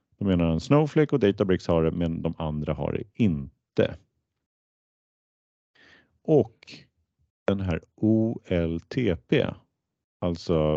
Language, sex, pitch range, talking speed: Swedish, male, 85-110 Hz, 105 wpm